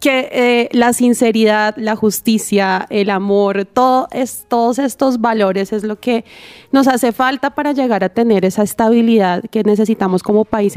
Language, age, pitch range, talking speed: Spanish, 30-49, 210-260 Hz, 150 wpm